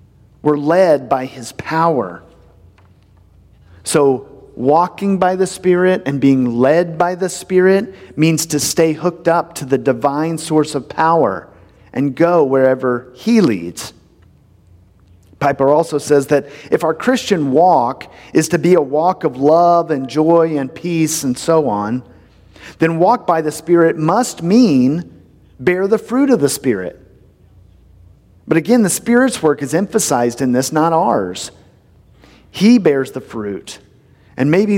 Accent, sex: American, male